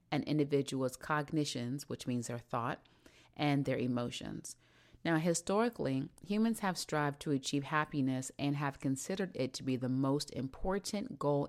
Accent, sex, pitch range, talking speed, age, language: American, female, 135-165 Hz, 145 wpm, 30-49, English